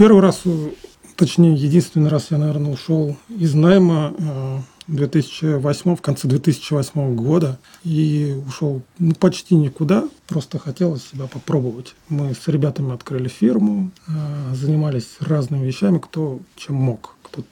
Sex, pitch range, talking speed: male, 135-165 Hz, 125 wpm